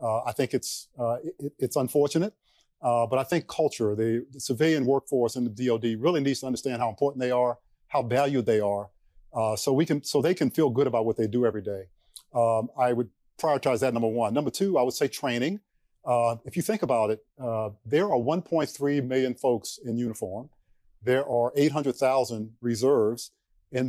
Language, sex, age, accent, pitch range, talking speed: English, male, 50-69, American, 115-145 Hz, 200 wpm